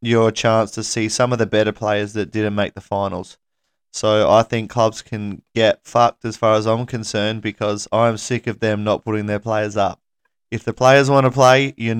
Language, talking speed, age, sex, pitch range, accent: English, 215 wpm, 20-39, male, 105-120 Hz, Australian